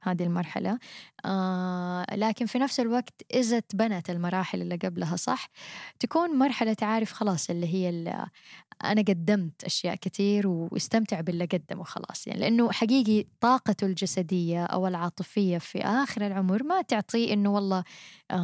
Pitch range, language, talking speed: 180-220 Hz, Arabic, 135 wpm